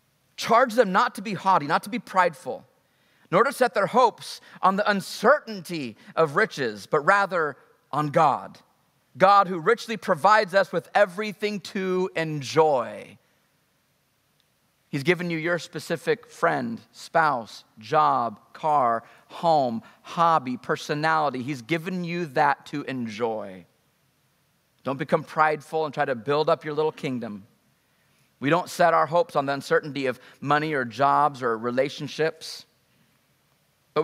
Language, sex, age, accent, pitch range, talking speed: English, male, 30-49, American, 140-200 Hz, 135 wpm